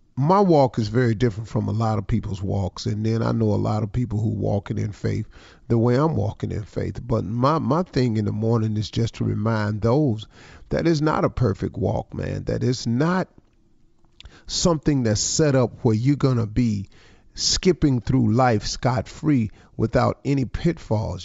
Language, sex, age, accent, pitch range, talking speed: English, male, 40-59, American, 110-140 Hz, 190 wpm